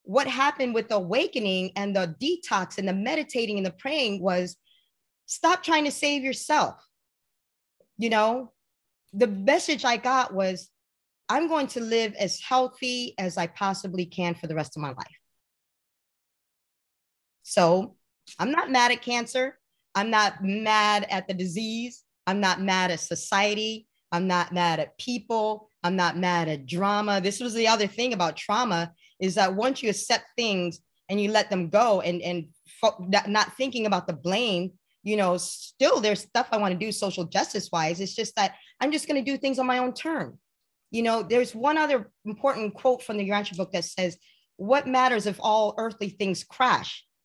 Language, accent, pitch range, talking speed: English, American, 185-245 Hz, 180 wpm